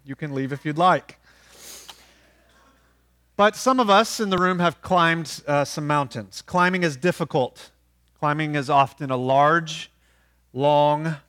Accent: American